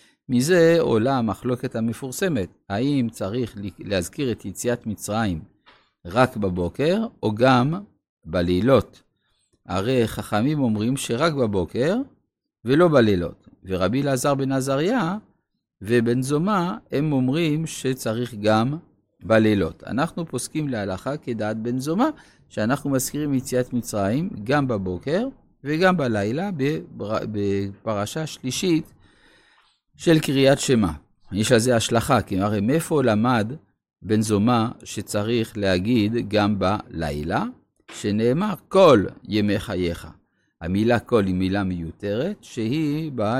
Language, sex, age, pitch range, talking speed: Hebrew, male, 50-69, 105-145 Hz, 105 wpm